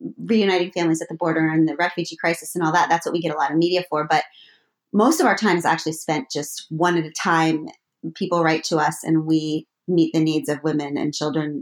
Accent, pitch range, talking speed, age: American, 155-185 Hz, 245 wpm, 30-49